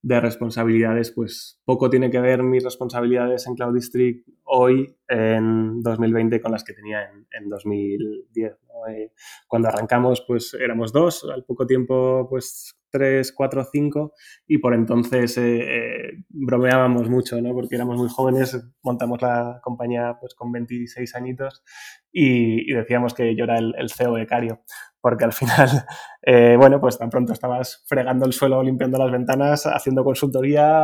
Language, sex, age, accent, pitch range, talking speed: Spanish, male, 20-39, Spanish, 115-130 Hz, 160 wpm